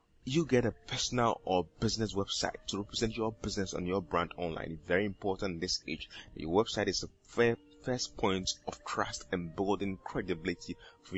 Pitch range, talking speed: 95-120 Hz, 170 wpm